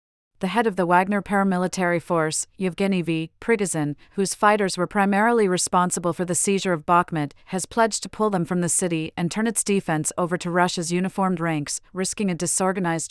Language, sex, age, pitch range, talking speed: English, female, 40-59, 165-200 Hz, 185 wpm